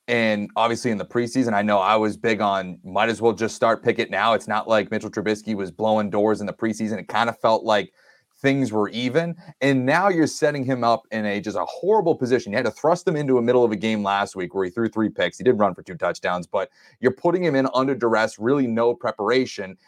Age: 30-49